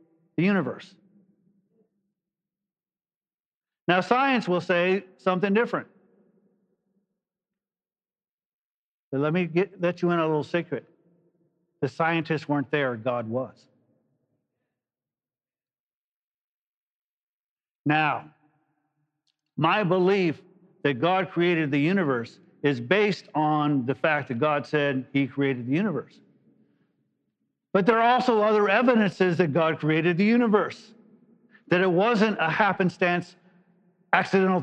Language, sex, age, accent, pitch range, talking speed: English, male, 50-69, American, 165-210 Hz, 105 wpm